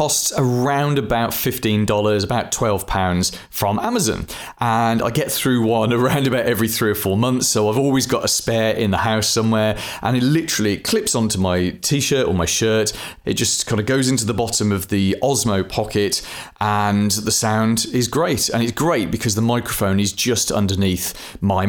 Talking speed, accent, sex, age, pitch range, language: 185 wpm, British, male, 30-49, 105-135 Hz, English